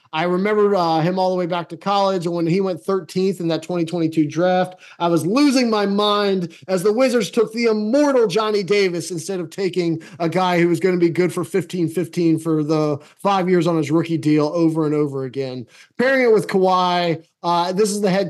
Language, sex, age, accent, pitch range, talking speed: English, male, 20-39, American, 165-195 Hz, 215 wpm